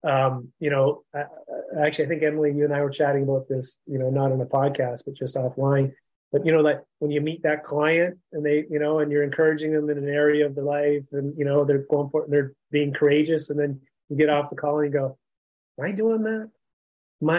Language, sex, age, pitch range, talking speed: English, male, 30-49, 140-160 Hz, 250 wpm